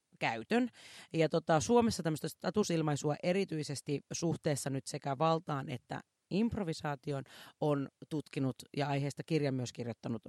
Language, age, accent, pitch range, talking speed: Finnish, 30-49, native, 135-170 Hz, 115 wpm